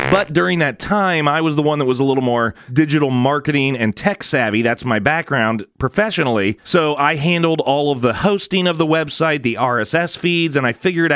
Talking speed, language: 205 wpm, English